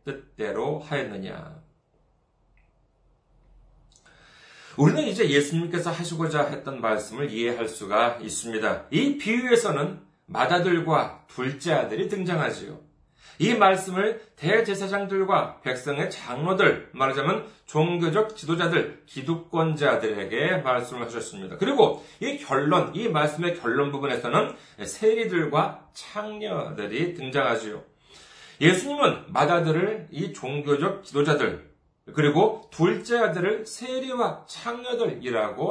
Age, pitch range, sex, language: 40-59, 145-210 Hz, male, Korean